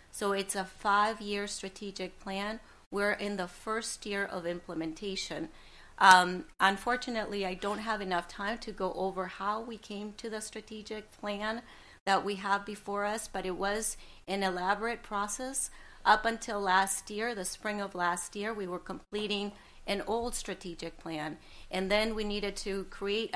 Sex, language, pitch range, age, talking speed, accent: female, English, 180-210 Hz, 40-59, 160 wpm, American